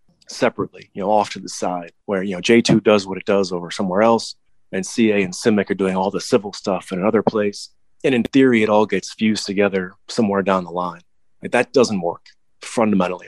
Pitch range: 95-110 Hz